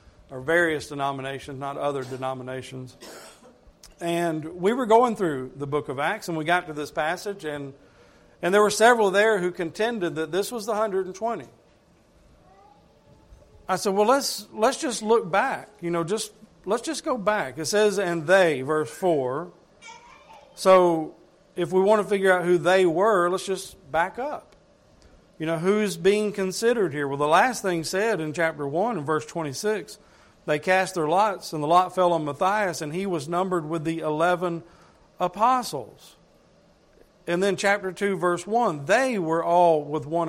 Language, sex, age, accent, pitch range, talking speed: English, male, 50-69, American, 150-200 Hz, 170 wpm